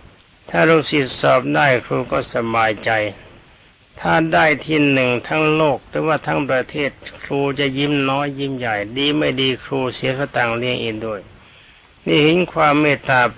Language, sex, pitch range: Thai, male, 115-145 Hz